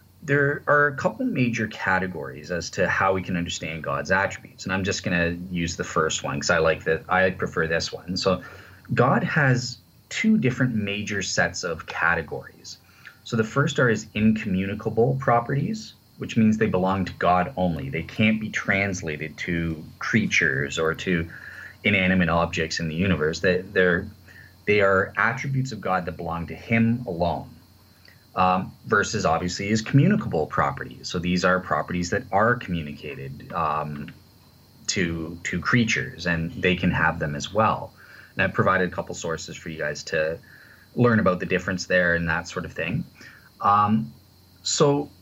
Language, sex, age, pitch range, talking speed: English, male, 30-49, 90-110 Hz, 170 wpm